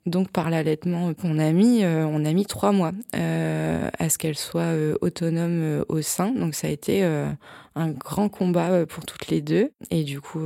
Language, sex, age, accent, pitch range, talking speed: French, female, 20-39, French, 155-180 Hz, 210 wpm